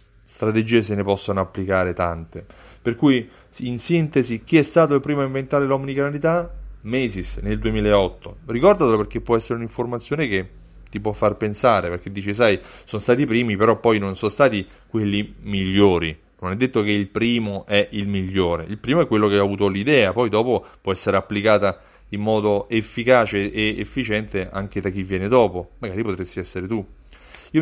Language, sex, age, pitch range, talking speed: Italian, male, 30-49, 100-130 Hz, 180 wpm